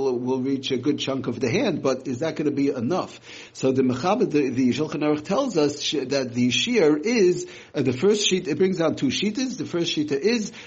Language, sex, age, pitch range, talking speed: English, male, 60-79, 130-170 Hz, 225 wpm